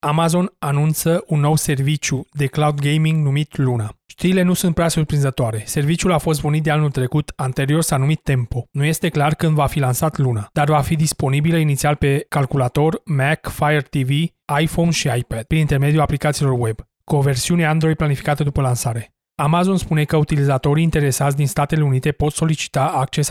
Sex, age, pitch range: male, 30-49, 140-160 Hz